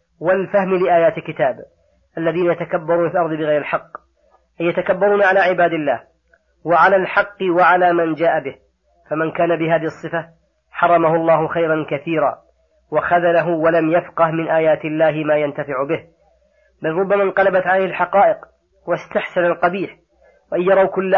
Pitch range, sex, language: 165-185 Hz, female, Arabic